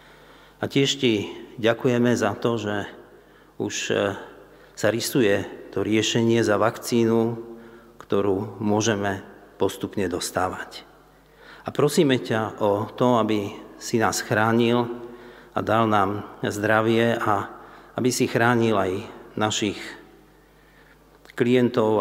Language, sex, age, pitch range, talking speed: Slovak, male, 50-69, 105-120 Hz, 105 wpm